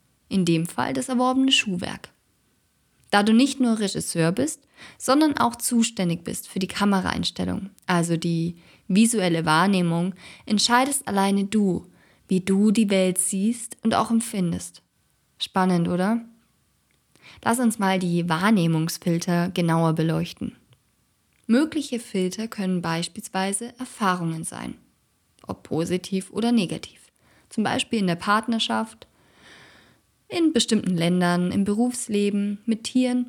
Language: German